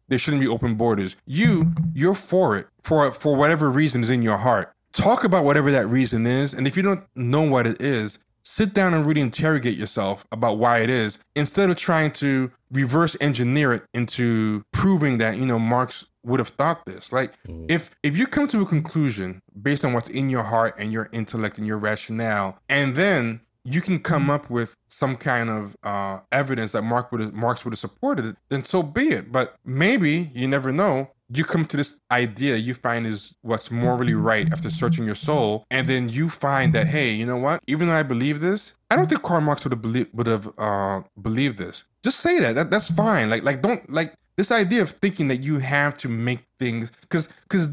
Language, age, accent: English, 20-39, American